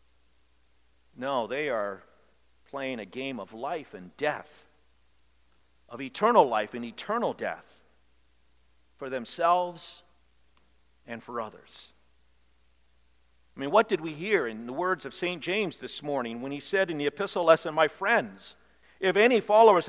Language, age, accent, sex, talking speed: English, 50-69, American, male, 140 wpm